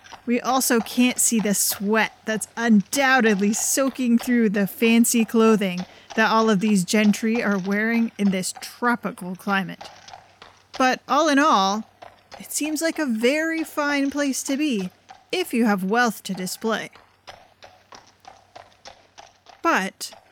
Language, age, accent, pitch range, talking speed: English, 30-49, American, 205-270 Hz, 130 wpm